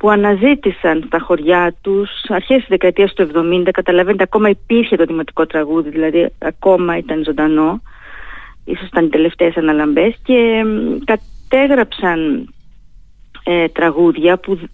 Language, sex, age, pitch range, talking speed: Greek, female, 20-39, 180-235 Hz, 120 wpm